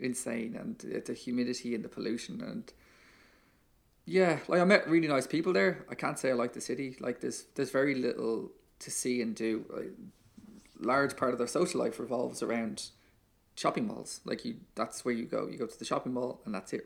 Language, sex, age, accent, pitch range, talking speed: English, male, 20-39, Irish, 120-155 Hz, 205 wpm